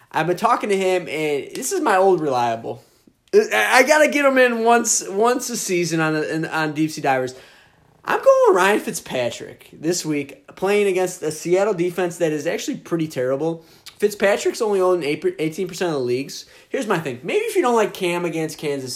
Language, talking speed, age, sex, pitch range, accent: English, 195 wpm, 20-39, male, 145-200 Hz, American